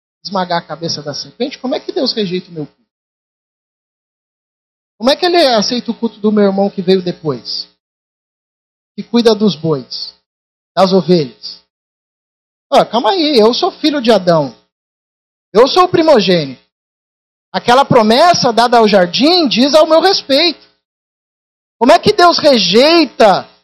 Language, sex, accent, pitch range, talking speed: Portuguese, male, Brazilian, 175-255 Hz, 145 wpm